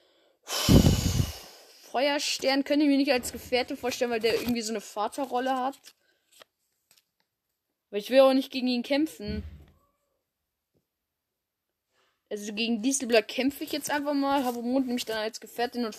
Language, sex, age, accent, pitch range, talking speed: German, female, 10-29, German, 215-285 Hz, 145 wpm